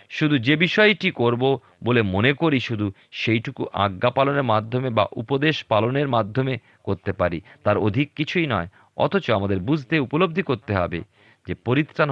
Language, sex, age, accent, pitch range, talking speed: Bengali, male, 40-59, native, 100-145 Hz, 145 wpm